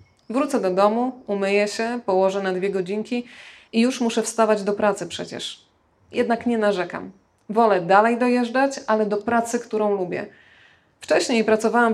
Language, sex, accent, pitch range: Polish, female, native, 190-225 Hz